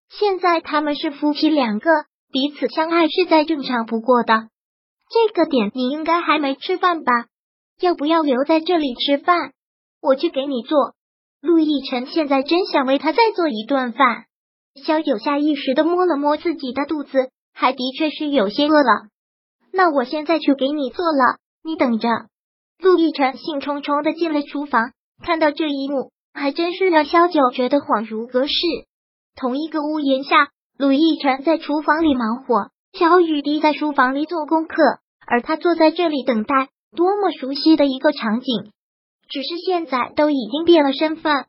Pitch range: 265-325 Hz